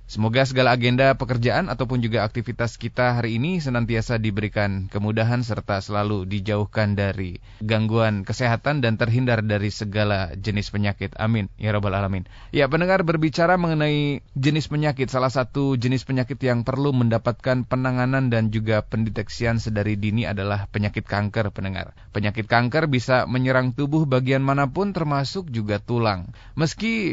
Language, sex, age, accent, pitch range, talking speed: Indonesian, male, 20-39, native, 110-145 Hz, 140 wpm